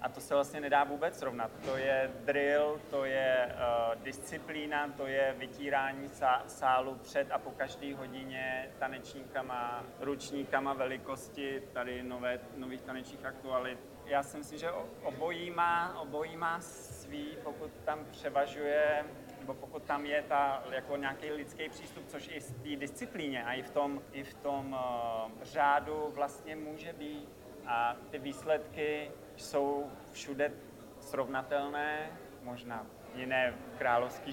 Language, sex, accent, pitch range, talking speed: Czech, male, native, 130-150 Hz, 140 wpm